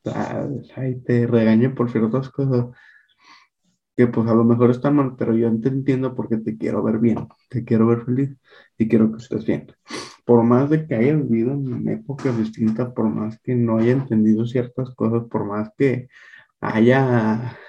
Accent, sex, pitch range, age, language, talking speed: Mexican, male, 110-130 Hz, 20-39, Spanish, 175 wpm